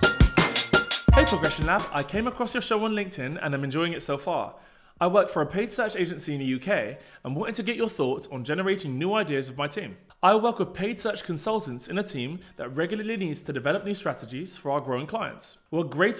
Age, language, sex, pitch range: 20-39, English, male, 140-195 Hz